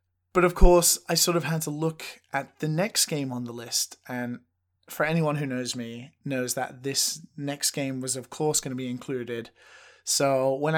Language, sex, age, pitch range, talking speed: English, male, 20-39, 130-165 Hz, 200 wpm